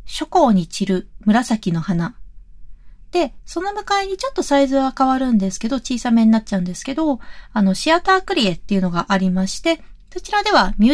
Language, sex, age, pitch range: Japanese, female, 30-49, 195-300 Hz